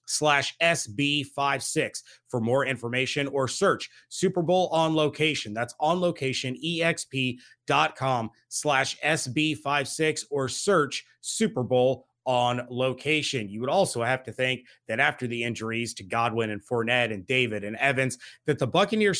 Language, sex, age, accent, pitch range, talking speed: English, male, 30-49, American, 125-155 Hz, 140 wpm